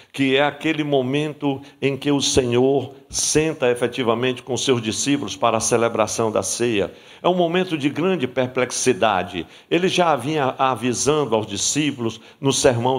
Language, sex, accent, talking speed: Portuguese, male, Brazilian, 150 wpm